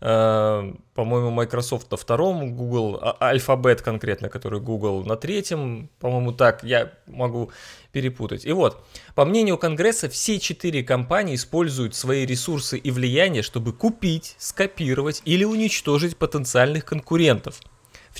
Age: 20-39